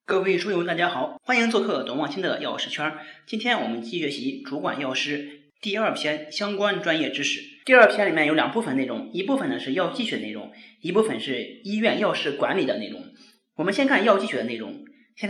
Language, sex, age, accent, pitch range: Chinese, male, 30-49, native, 175-275 Hz